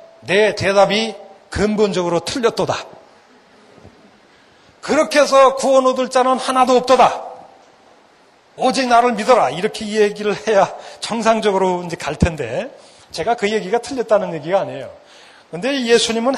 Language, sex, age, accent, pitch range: Korean, male, 40-59, native, 180-230 Hz